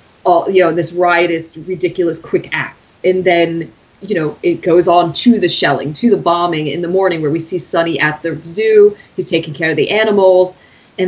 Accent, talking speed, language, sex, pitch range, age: American, 200 wpm, English, female, 170-245 Hz, 30-49